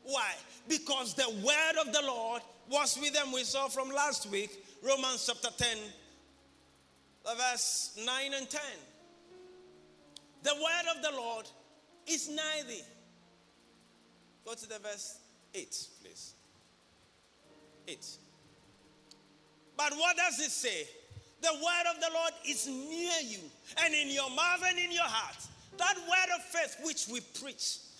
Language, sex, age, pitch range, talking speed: English, male, 50-69, 250-340 Hz, 140 wpm